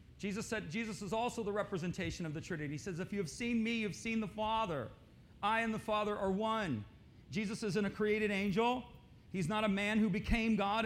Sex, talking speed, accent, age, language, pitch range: male, 220 wpm, American, 40-59, English, 170-215 Hz